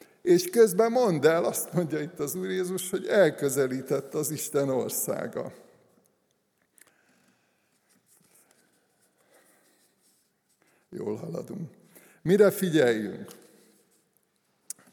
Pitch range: 140-185 Hz